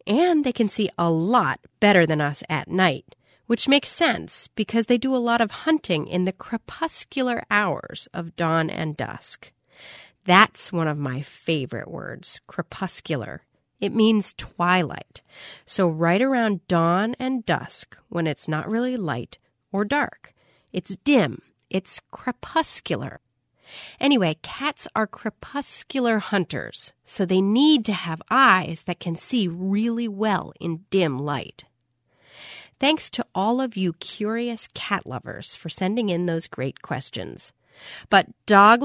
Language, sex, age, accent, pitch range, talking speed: English, female, 40-59, American, 170-260 Hz, 140 wpm